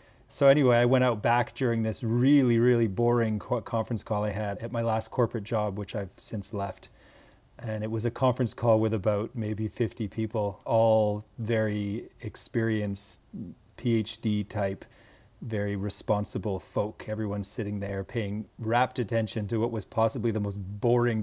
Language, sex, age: English, male, 40-59